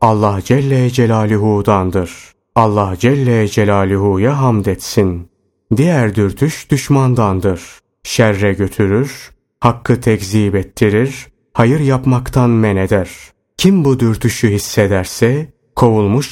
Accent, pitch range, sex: native, 100-130 Hz, male